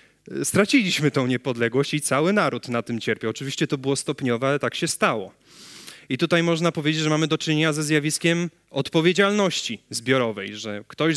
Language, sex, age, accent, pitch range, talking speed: Polish, male, 30-49, native, 135-170 Hz, 165 wpm